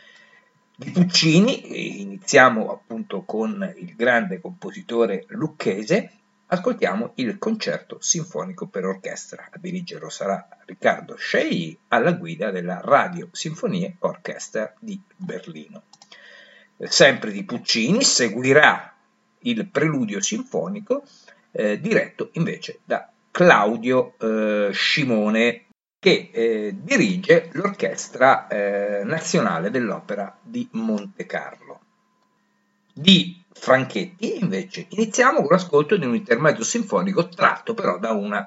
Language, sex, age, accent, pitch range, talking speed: Italian, male, 50-69, native, 160-220 Hz, 105 wpm